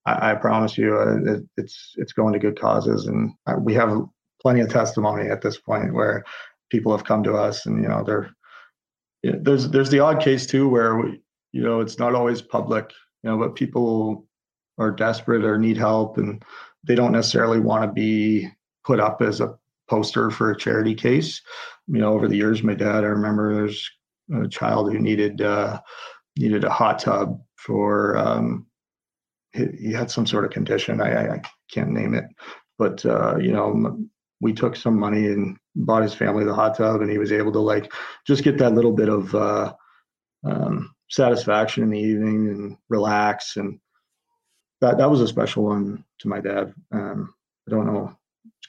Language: English